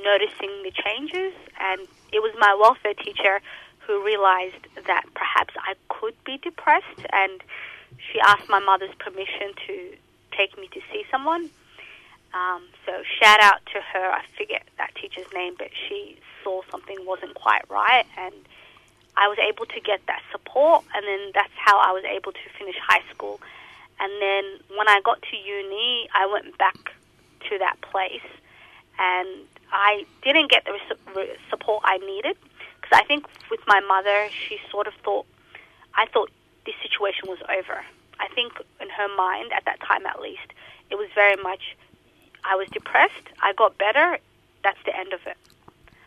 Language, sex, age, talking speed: English, female, 20-39, 165 wpm